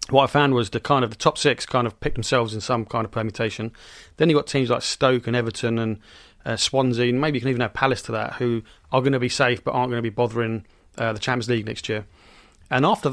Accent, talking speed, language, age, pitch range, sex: British, 275 wpm, English, 30-49, 120-145 Hz, male